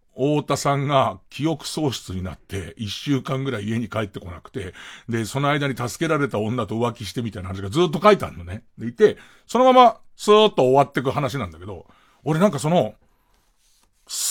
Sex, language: male, Japanese